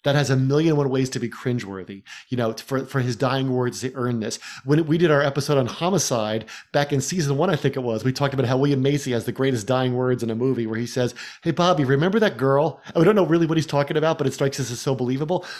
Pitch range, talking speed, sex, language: 125-155 Hz, 275 wpm, male, English